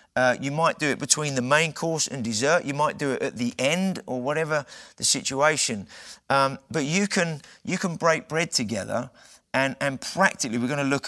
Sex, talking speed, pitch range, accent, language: male, 205 wpm, 130-155 Hz, British, English